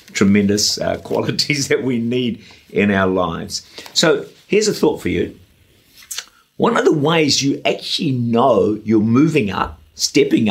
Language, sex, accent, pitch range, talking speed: English, male, British, 110-155 Hz, 150 wpm